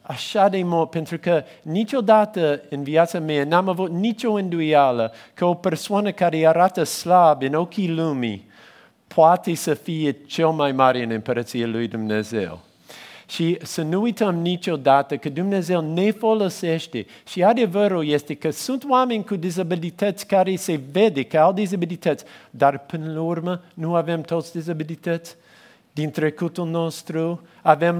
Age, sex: 50-69, male